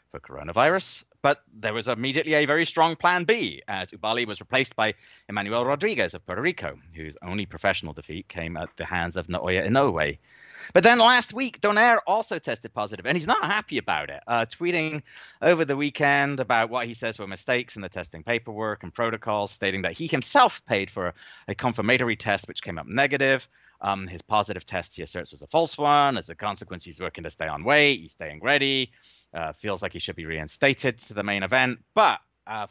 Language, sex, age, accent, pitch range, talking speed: English, male, 30-49, British, 95-150 Hz, 205 wpm